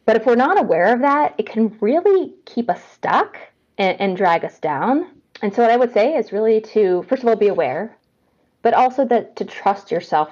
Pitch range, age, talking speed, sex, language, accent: 175-225 Hz, 20-39, 220 wpm, female, English, American